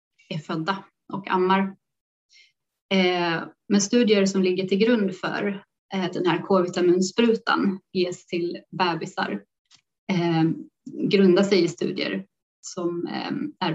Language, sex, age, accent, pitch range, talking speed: Swedish, female, 30-49, native, 180-210 Hz, 100 wpm